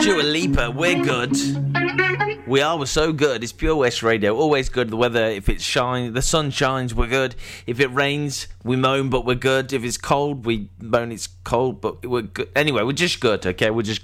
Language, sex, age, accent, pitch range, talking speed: English, male, 20-39, British, 110-145 Hz, 215 wpm